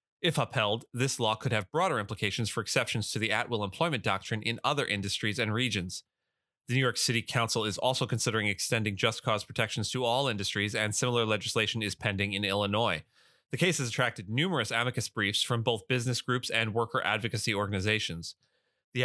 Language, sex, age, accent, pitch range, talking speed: English, male, 30-49, American, 105-125 Hz, 185 wpm